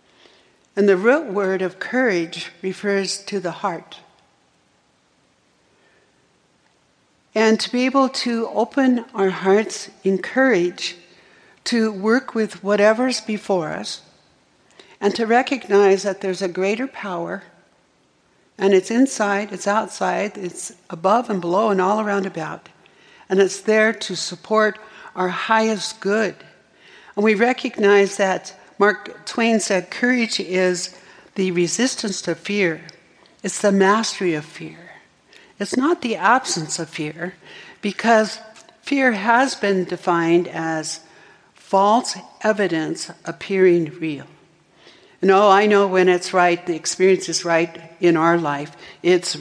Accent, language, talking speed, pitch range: American, English, 125 wpm, 175-220 Hz